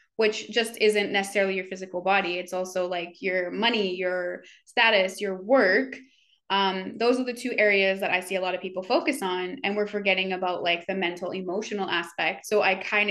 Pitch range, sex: 185-220 Hz, female